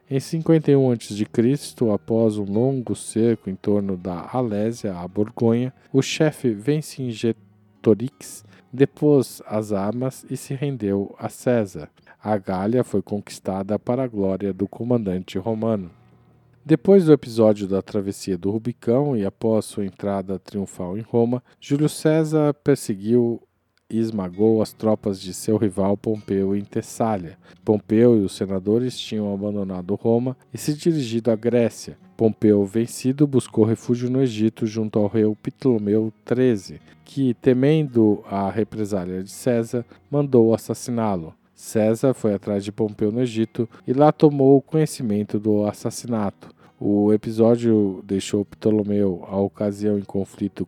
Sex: male